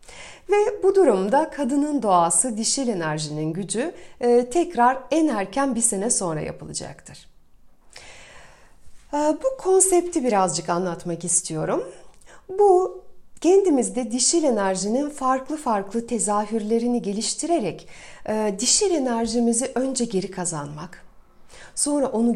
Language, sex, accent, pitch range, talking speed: Turkish, female, native, 195-280 Hz, 100 wpm